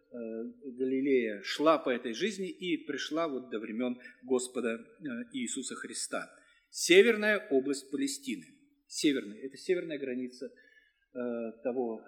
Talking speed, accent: 105 wpm, native